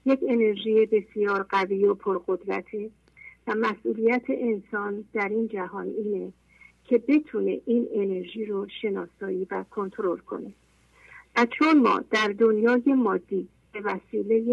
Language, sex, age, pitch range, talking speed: English, female, 50-69, 200-245 Hz, 125 wpm